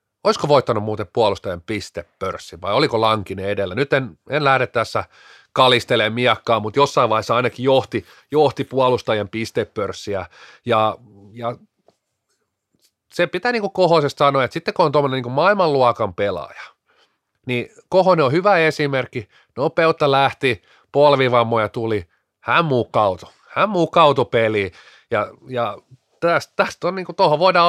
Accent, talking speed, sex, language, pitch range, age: native, 125 wpm, male, Finnish, 115-145 Hz, 30-49